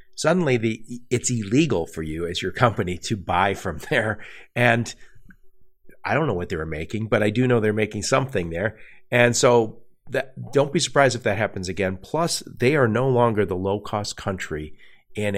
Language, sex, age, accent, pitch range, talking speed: English, male, 50-69, American, 95-125 Hz, 180 wpm